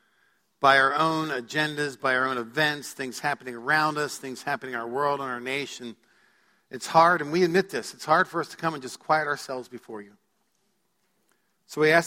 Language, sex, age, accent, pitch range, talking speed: English, male, 50-69, American, 130-160 Hz, 205 wpm